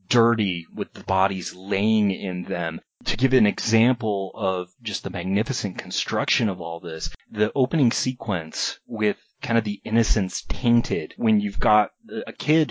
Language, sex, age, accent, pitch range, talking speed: English, male, 30-49, American, 95-120 Hz, 155 wpm